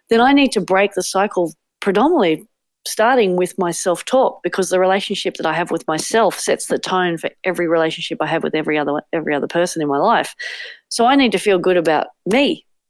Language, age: English, 40-59